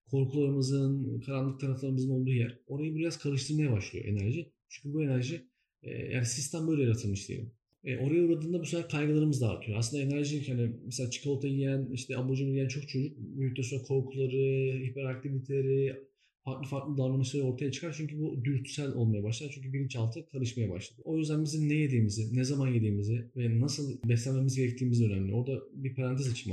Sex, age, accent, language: male, 40-59, native, Turkish